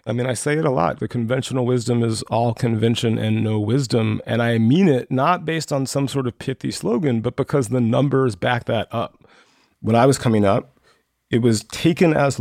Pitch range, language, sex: 115-175 Hz, English, male